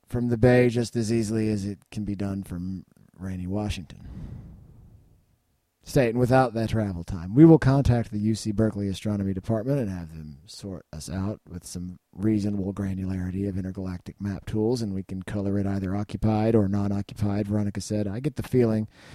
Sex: male